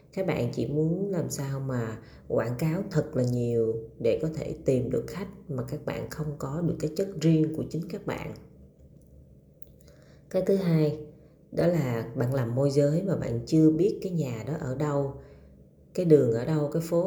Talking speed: 195 wpm